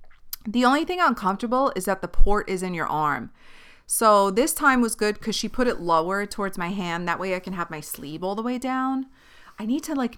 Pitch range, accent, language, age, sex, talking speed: 175-225 Hz, American, English, 30-49, female, 235 wpm